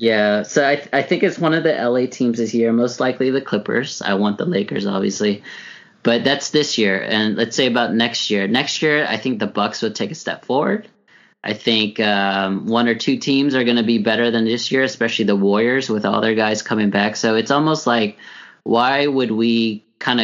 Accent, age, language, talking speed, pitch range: American, 20-39, English, 225 wpm, 100-120 Hz